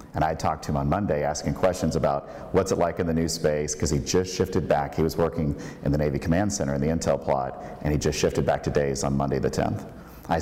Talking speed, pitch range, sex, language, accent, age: 265 wpm, 70-85 Hz, male, English, American, 50-69